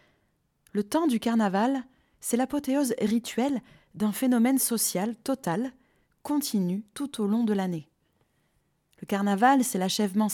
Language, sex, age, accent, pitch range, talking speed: French, female, 20-39, French, 190-225 Hz, 120 wpm